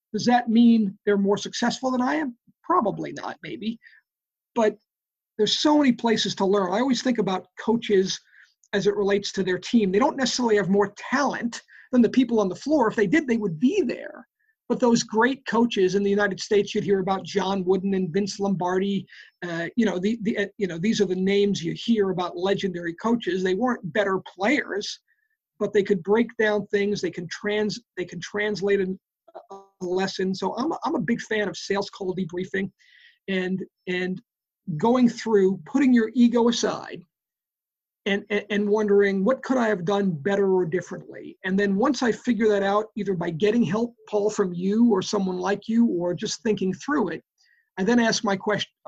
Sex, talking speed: male, 195 wpm